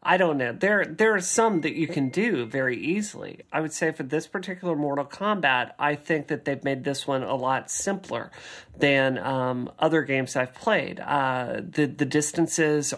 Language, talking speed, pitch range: English, 190 wpm, 130-165 Hz